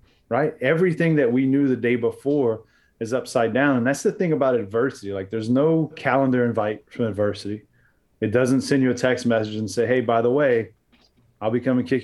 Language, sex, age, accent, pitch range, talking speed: English, male, 30-49, American, 105-125 Hz, 205 wpm